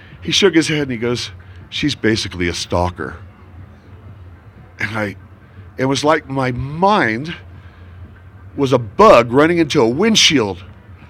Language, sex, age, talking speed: English, male, 50-69, 135 wpm